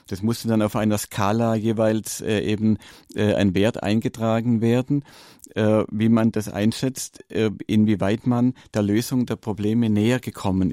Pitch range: 105-135 Hz